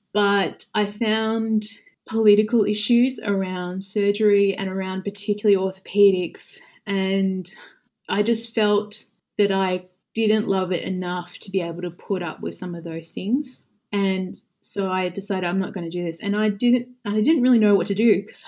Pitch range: 185-220 Hz